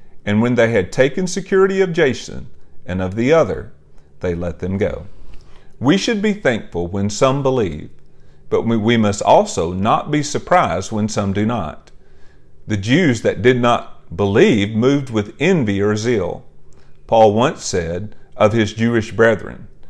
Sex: male